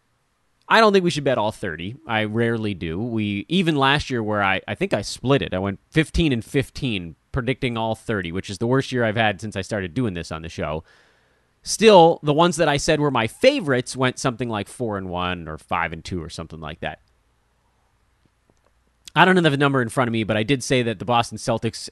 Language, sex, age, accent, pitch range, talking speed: English, male, 30-49, American, 100-140 Hz, 235 wpm